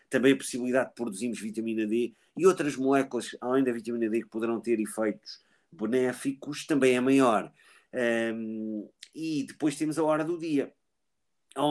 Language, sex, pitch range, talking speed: Portuguese, male, 125-160 Hz, 160 wpm